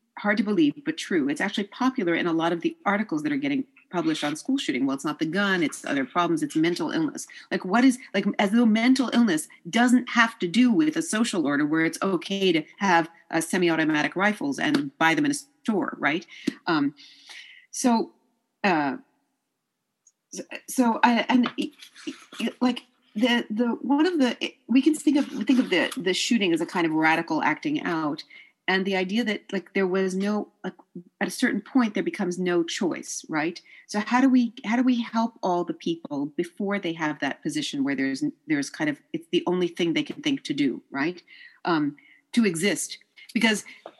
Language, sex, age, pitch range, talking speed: English, female, 40-59, 190-295 Hz, 195 wpm